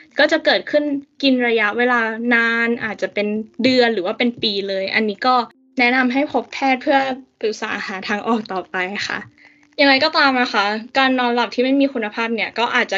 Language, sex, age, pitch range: Thai, female, 10-29, 205-265 Hz